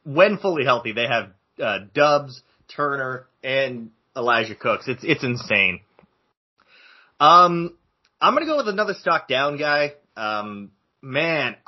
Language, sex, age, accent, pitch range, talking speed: English, male, 30-49, American, 125-160 Hz, 135 wpm